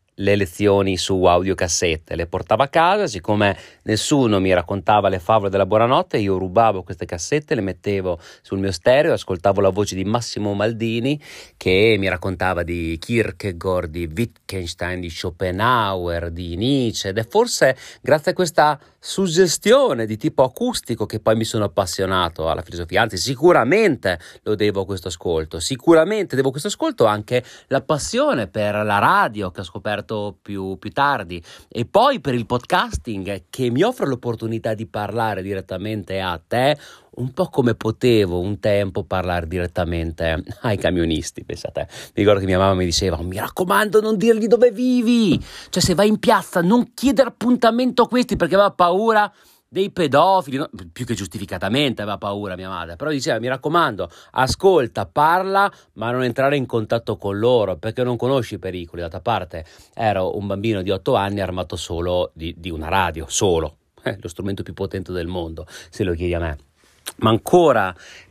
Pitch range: 95-135 Hz